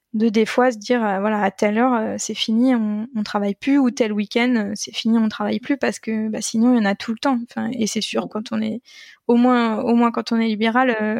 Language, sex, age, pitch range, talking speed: French, female, 20-39, 215-245 Hz, 265 wpm